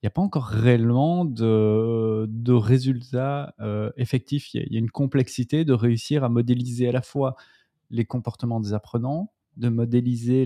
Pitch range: 115-135 Hz